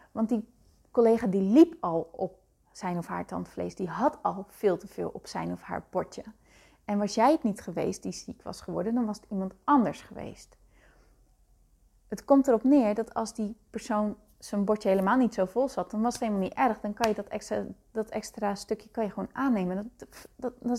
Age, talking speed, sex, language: 30-49, 200 wpm, female, Dutch